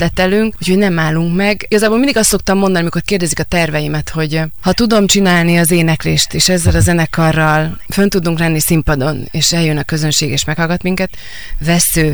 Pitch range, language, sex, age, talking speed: 150-170 Hz, Hungarian, female, 30-49, 180 wpm